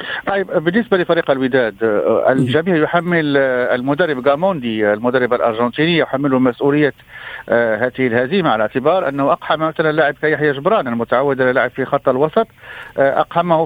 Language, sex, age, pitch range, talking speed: Arabic, male, 50-69, 140-195 Hz, 125 wpm